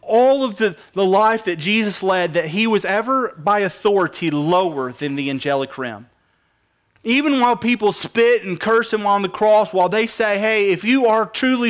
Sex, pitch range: male, 185-240 Hz